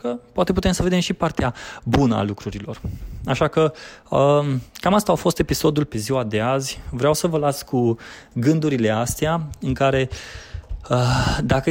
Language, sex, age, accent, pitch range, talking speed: Romanian, male, 20-39, native, 115-145 Hz, 155 wpm